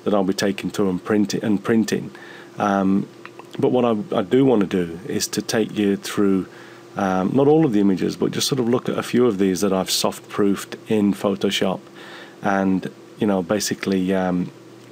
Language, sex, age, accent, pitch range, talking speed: English, male, 30-49, British, 95-115 Hz, 185 wpm